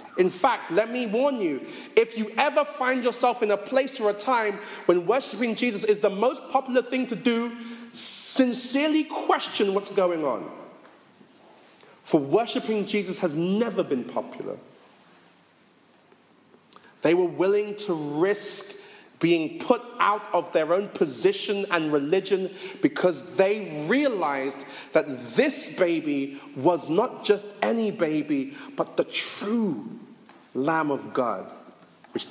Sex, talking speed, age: male, 130 wpm, 30-49